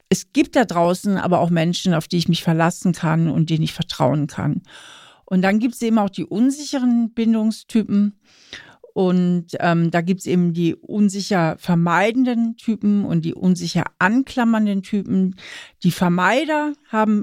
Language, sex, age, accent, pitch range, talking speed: German, female, 50-69, German, 175-210 Hz, 155 wpm